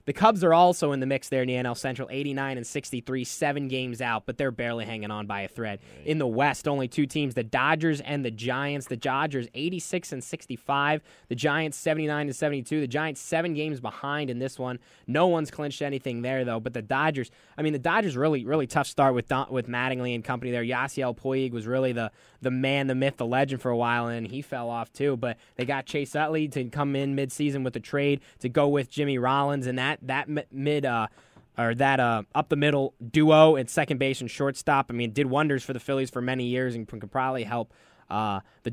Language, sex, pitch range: English, male, 120-145 Hz